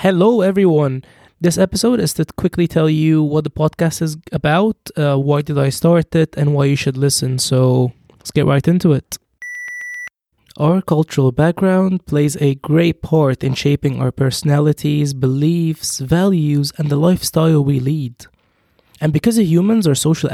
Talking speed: 160 wpm